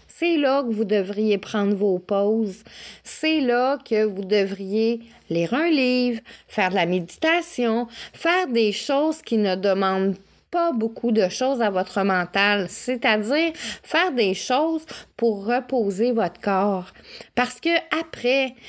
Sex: female